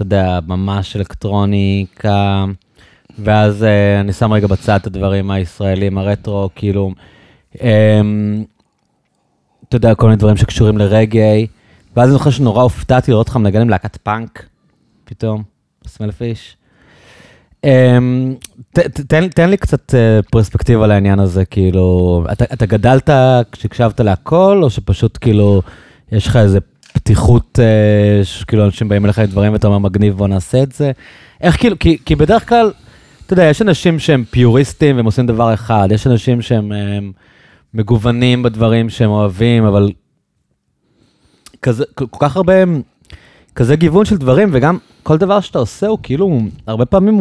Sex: male